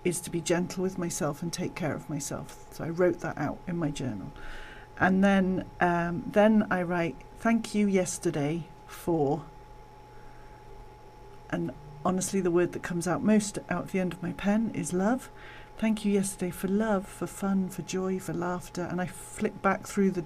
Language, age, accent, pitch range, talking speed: English, 40-59, British, 170-195 Hz, 185 wpm